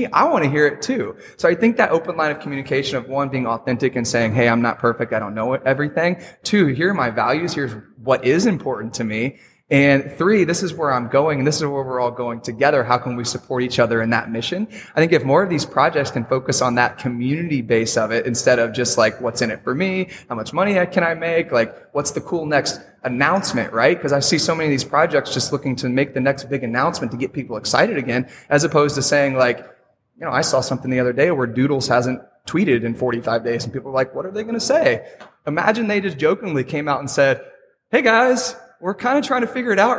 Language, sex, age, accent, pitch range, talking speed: English, male, 20-39, American, 125-175 Hz, 255 wpm